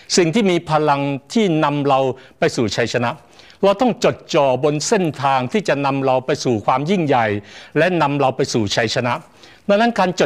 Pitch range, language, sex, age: 130-180 Hz, Thai, male, 60-79